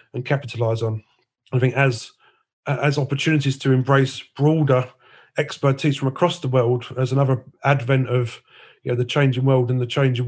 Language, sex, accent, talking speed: English, male, British, 165 wpm